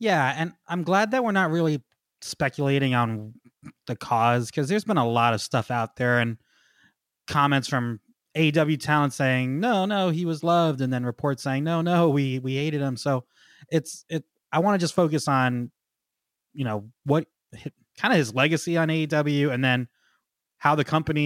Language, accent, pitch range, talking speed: English, American, 125-155 Hz, 185 wpm